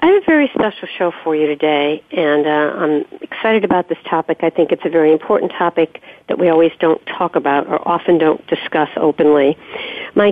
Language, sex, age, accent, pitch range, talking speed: English, female, 50-69, American, 160-200 Hz, 205 wpm